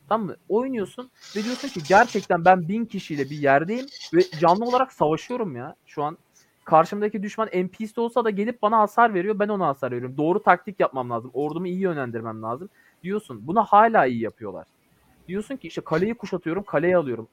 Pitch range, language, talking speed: 150-205 Hz, Turkish, 180 wpm